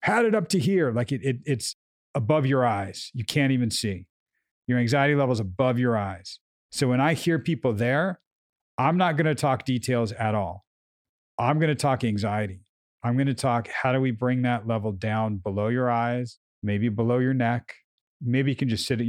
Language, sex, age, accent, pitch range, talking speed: English, male, 40-59, American, 110-140 Hz, 195 wpm